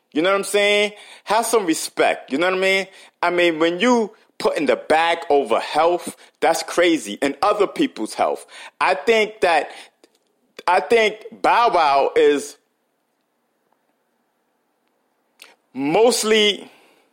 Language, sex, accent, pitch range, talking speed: English, male, American, 165-230 Hz, 135 wpm